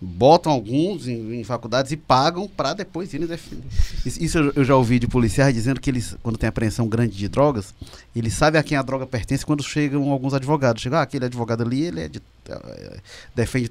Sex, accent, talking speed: male, Brazilian, 215 wpm